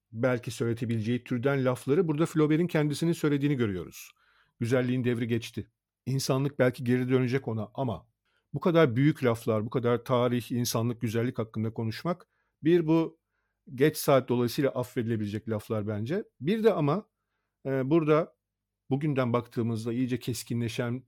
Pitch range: 120-150 Hz